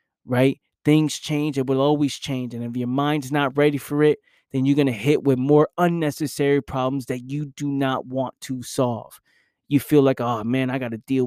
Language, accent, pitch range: English, American, 130-150 Hz